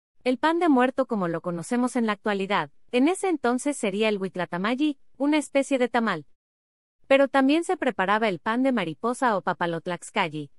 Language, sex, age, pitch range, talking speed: Spanish, female, 30-49, 185-270 Hz, 170 wpm